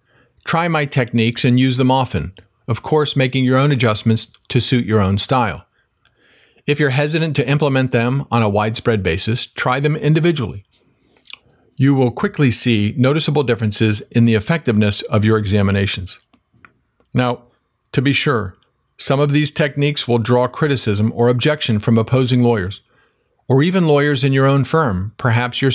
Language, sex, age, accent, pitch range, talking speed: English, male, 50-69, American, 115-135 Hz, 160 wpm